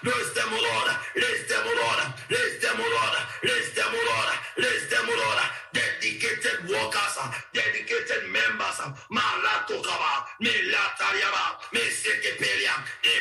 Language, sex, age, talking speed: English, male, 50-69, 125 wpm